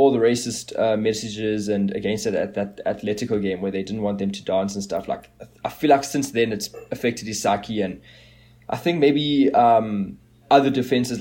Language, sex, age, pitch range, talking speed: English, male, 20-39, 100-120 Hz, 205 wpm